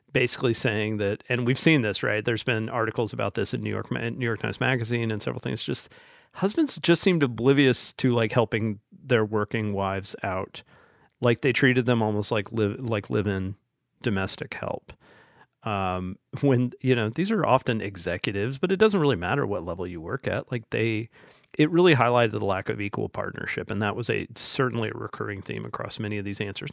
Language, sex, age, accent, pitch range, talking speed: English, male, 40-59, American, 110-135 Hz, 195 wpm